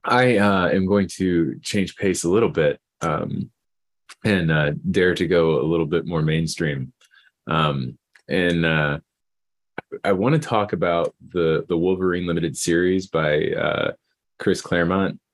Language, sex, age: English, male, 20-39